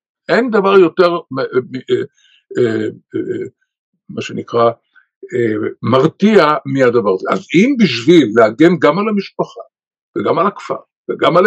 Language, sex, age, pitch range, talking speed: English, male, 60-79, 150-235 Hz, 105 wpm